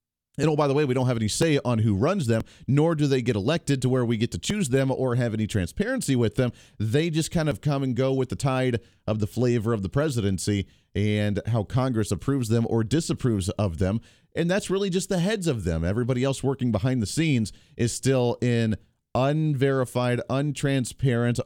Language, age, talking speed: English, 40-59, 215 wpm